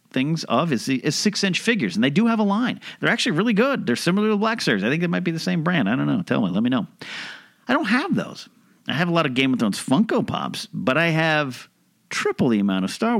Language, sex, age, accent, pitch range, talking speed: English, male, 40-59, American, 120-195 Hz, 275 wpm